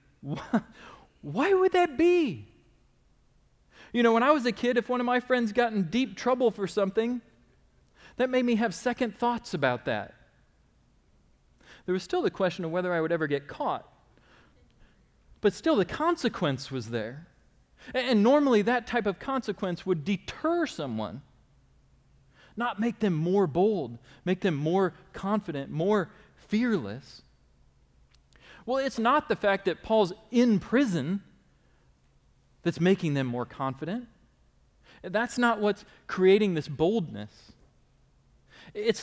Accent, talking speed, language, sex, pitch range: American, 140 wpm, English, male, 170-240 Hz